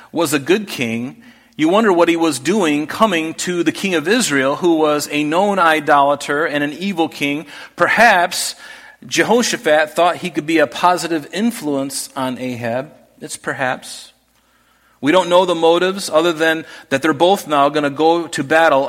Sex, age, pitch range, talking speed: male, 40-59, 135-175 Hz, 170 wpm